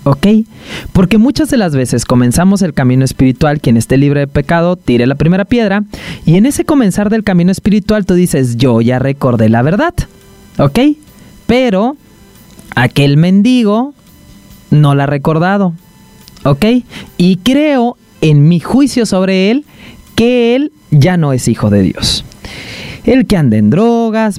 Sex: male